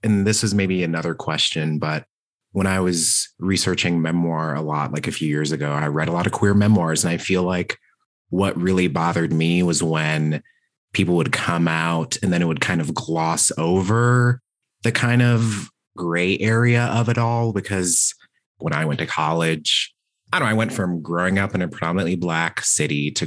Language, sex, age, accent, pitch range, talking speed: English, male, 30-49, American, 80-90 Hz, 195 wpm